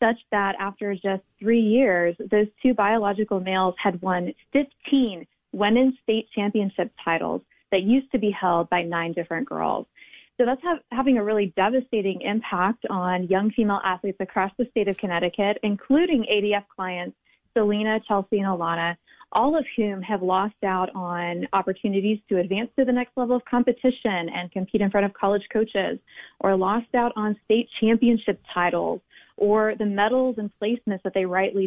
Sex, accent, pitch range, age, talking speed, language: female, American, 195-240 Hz, 20-39, 165 wpm, English